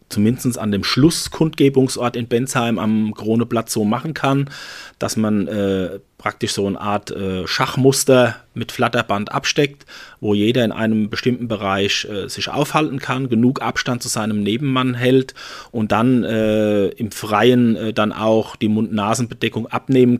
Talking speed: 150 wpm